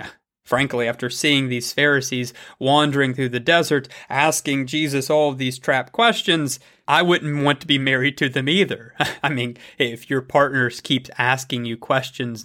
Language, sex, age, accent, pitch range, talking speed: English, male, 30-49, American, 130-175 Hz, 165 wpm